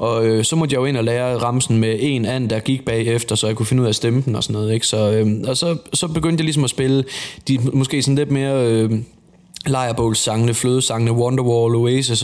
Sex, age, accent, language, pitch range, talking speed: male, 20-39, native, Danish, 115-140 Hz, 235 wpm